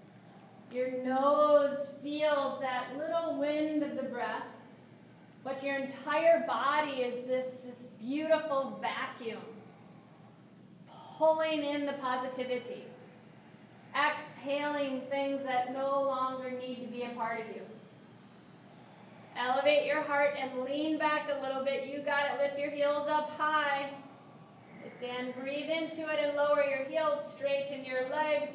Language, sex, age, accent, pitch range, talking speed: English, female, 30-49, American, 260-295 Hz, 130 wpm